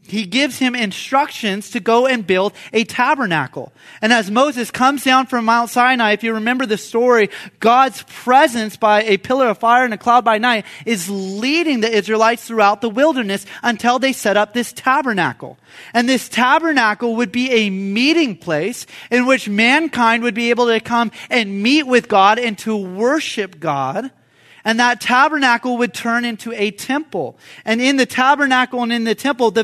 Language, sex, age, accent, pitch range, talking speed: English, male, 30-49, American, 210-250 Hz, 180 wpm